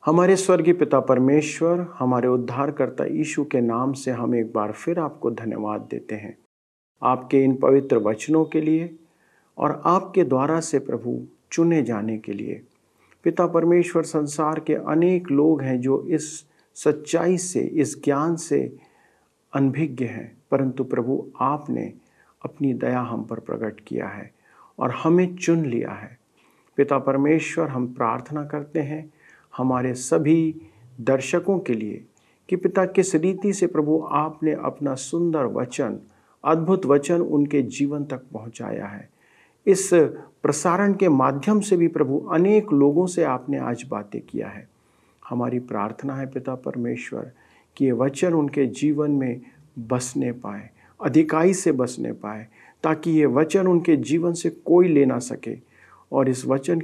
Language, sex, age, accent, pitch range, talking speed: Hindi, male, 50-69, native, 125-165 Hz, 145 wpm